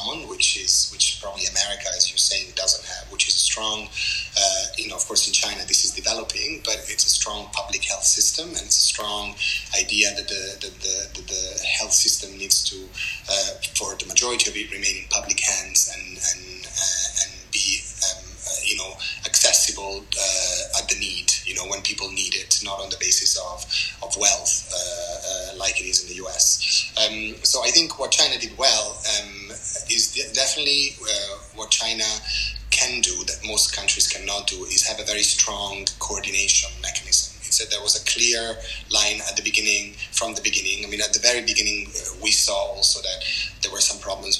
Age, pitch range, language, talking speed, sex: 30-49, 100-115 Hz, English, 195 wpm, male